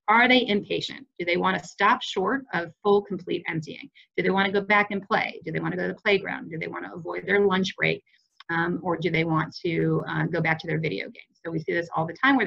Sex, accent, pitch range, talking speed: female, American, 170-215 Hz, 280 wpm